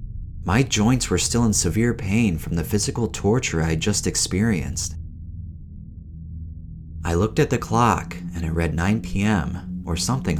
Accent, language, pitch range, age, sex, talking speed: American, English, 85-110 Hz, 30-49, male, 150 wpm